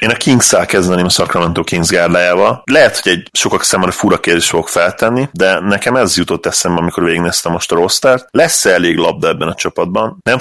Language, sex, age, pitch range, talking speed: Hungarian, male, 30-49, 90-100 Hz, 195 wpm